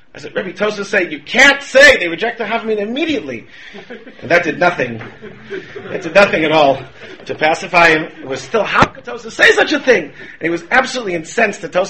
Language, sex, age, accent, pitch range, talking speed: English, male, 40-59, American, 150-195 Hz, 210 wpm